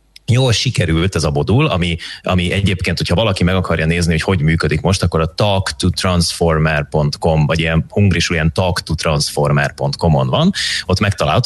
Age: 30-49